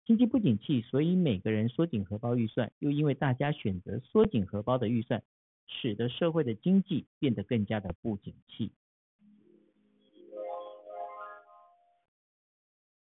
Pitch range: 110-165 Hz